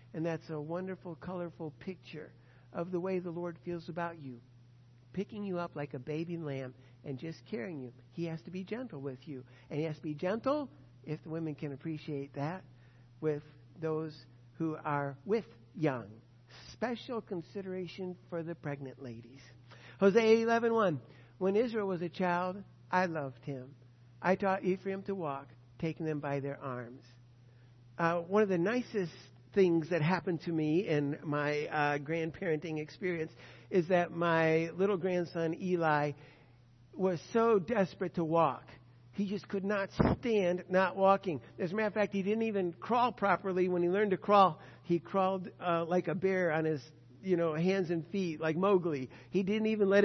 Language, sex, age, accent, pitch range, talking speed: English, male, 60-79, American, 140-190 Hz, 175 wpm